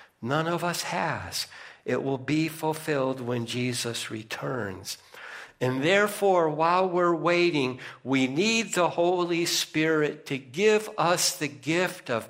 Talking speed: 130 wpm